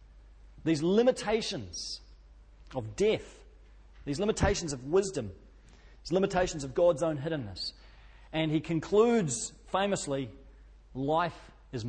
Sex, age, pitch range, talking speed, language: male, 40-59, 115-160 Hz, 100 wpm, English